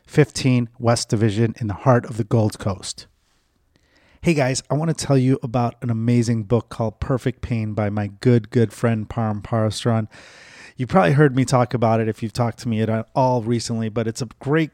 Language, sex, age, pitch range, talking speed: English, male, 30-49, 110-130 Hz, 205 wpm